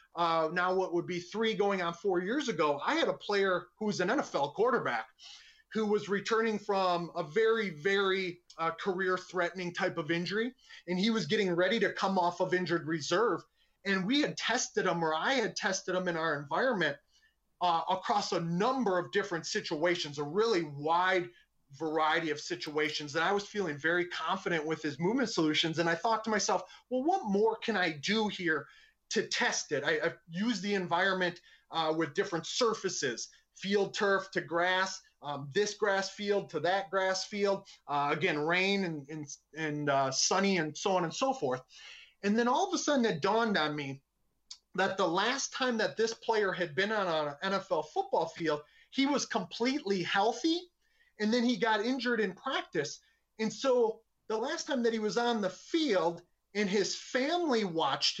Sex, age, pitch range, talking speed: male, 30-49, 170-220 Hz, 185 wpm